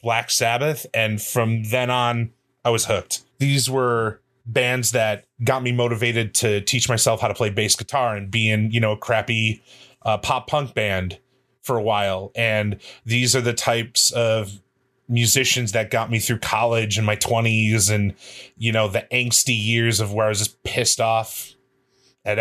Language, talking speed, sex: English, 180 wpm, male